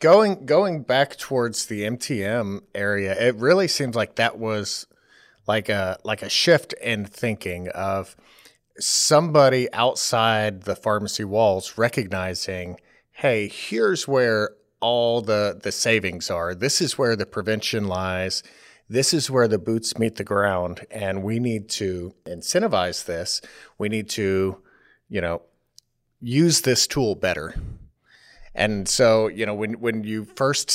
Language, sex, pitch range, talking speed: English, male, 100-125 Hz, 140 wpm